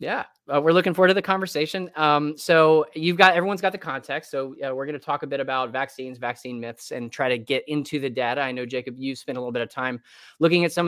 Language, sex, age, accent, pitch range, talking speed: English, male, 20-39, American, 125-155 Hz, 265 wpm